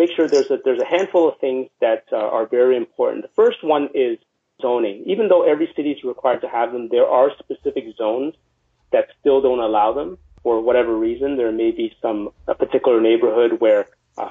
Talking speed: 205 wpm